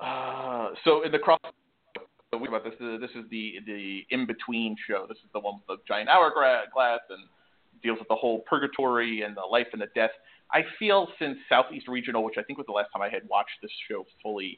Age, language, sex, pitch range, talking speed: 30-49, English, male, 115-160 Hz, 220 wpm